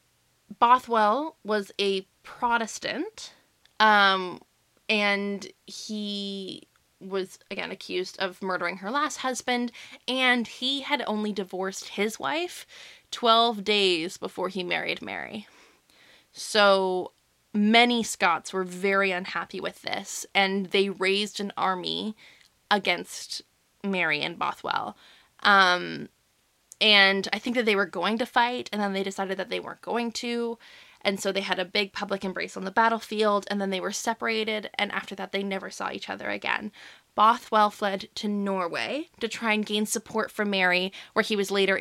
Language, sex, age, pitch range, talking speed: English, female, 20-39, 195-230 Hz, 150 wpm